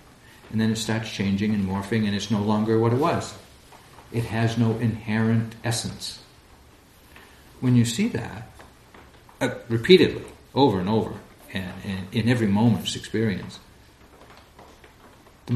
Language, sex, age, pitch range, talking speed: English, male, 60-79, 95-120 Hz, 135 wpm